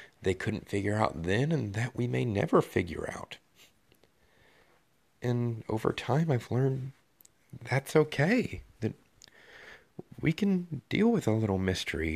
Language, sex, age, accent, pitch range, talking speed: English, male, 40-59, American, 100-130 Hz, 135 wpm